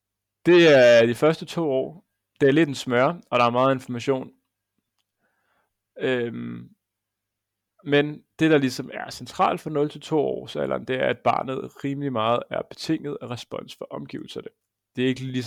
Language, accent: Danish, native